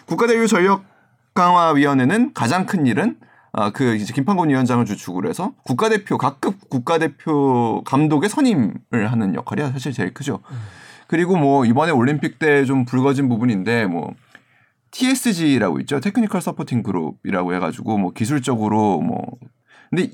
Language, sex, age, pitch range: Korean, male, 30-49, 130-215 Hz